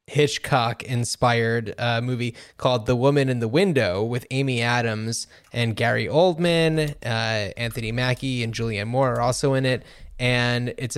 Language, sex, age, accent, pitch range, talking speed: English, male, 20-39, American, 120-145 Hz, 155 wpm